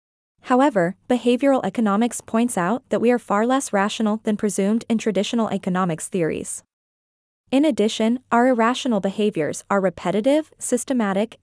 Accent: American